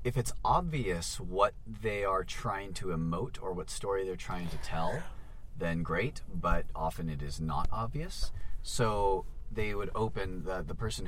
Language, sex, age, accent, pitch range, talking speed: English, male, 30-49, American, 85-110 Hz, 170 wpm